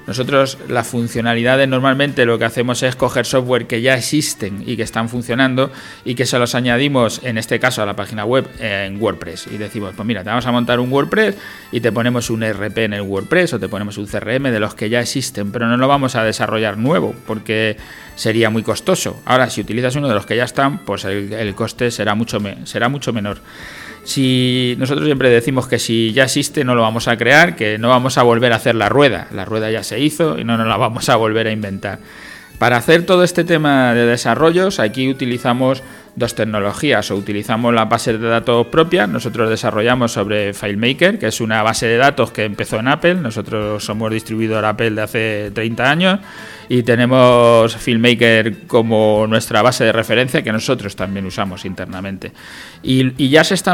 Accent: Spanish